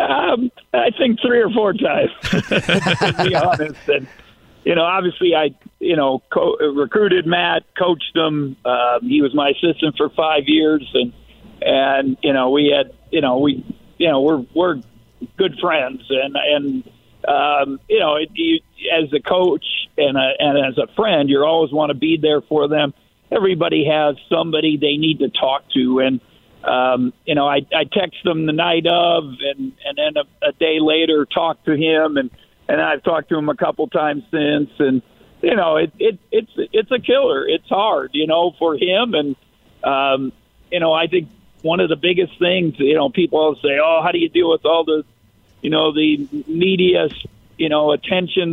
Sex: male